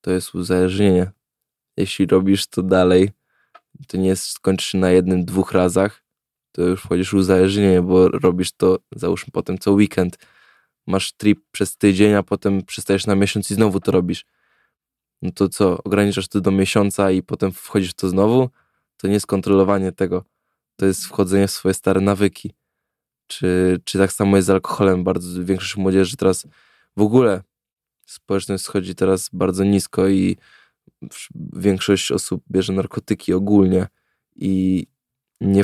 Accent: native